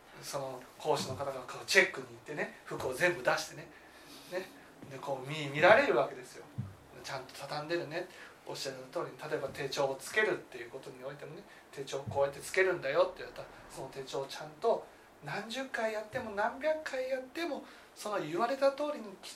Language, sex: Japanese, male